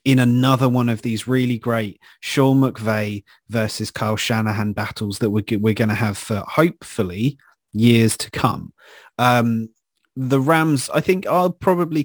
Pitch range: 110-130 Hz